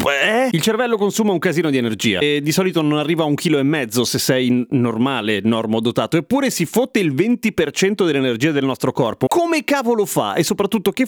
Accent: native